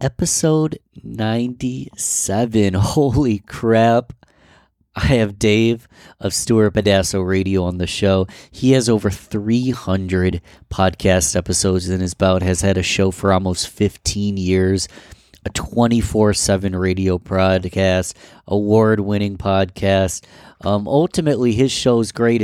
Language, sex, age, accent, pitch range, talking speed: English, male, 30-49, American, 95-110 Hz, 115 wpm